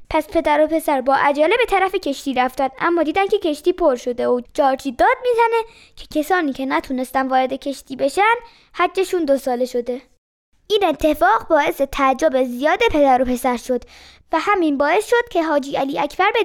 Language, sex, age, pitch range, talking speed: Persian, female, 20-39, 260-340 Hz, 180 wpm